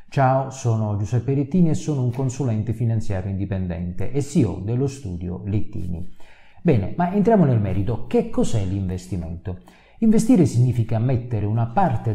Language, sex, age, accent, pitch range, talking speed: Italian, male, 40-59, native, 95-135 Hz, 140 wpm